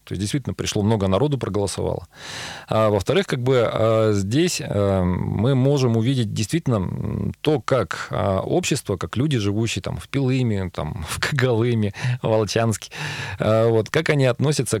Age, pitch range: 40-59, 100-130 Hz